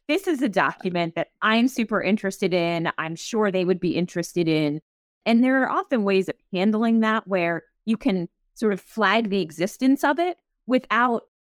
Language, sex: English, female